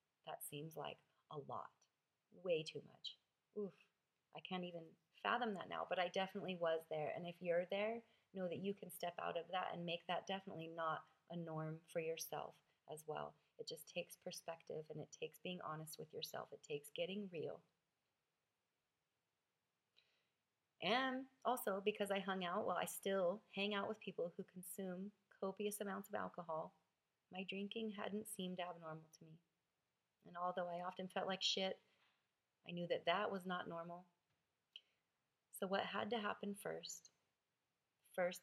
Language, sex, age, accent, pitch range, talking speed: English, female, 30-49, American, 170-210 Hz, 165 wpm